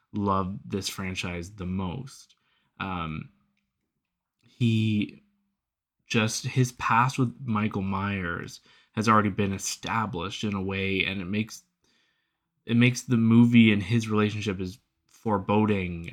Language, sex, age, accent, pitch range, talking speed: English, male, 20-39, American, 95-120 Hz, 120 wpm